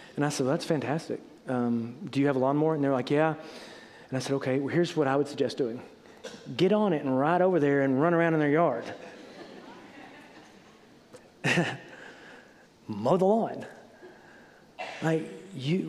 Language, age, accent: English, 40-59, American